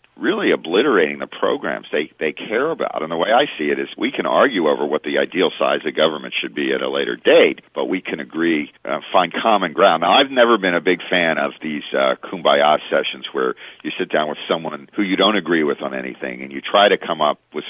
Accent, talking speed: American, 240 wpm